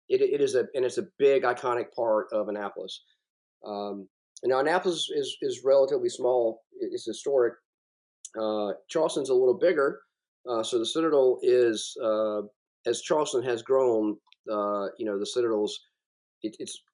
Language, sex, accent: English, male, American